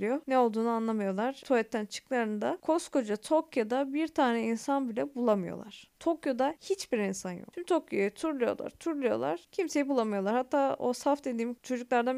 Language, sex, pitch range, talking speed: Turkish, female, 230-290 Hz, 135 wpm